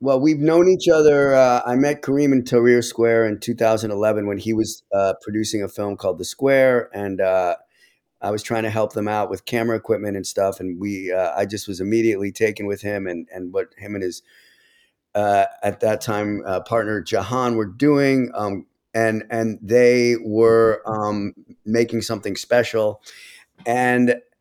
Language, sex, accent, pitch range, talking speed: English, male, American, 105-125 Hz, 175 wpm